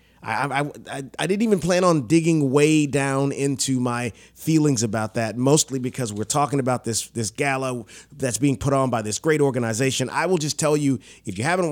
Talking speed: 195 wpm